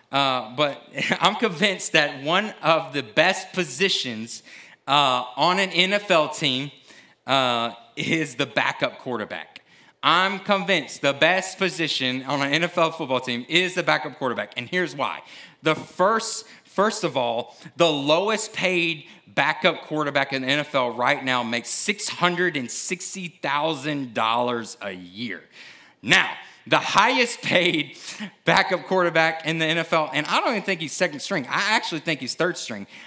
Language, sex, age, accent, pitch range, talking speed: English, male, 30-49, American, 135-185 Hz, 145 wpm